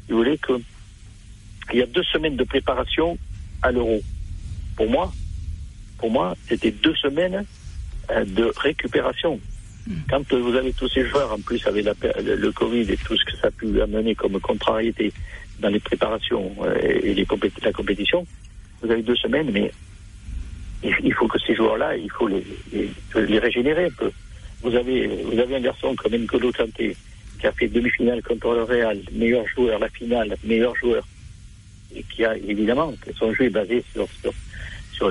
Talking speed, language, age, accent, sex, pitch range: 175 wpm, French, 60-79, French, male, 100-130 Hz